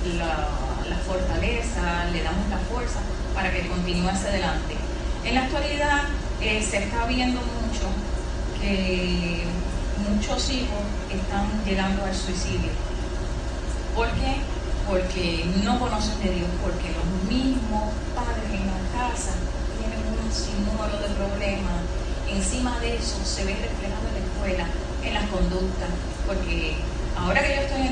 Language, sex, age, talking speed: Spanish, female, 30-49, 140 wpm